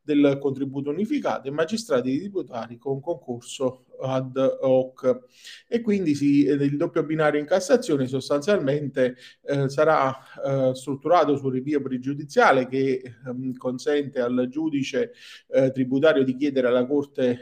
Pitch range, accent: 130-175 Hz, native